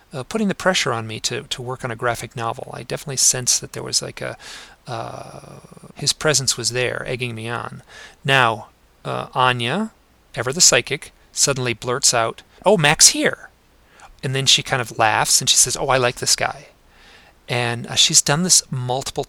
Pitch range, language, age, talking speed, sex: 125-155 Hz, English, 40-59, 190 wpm, male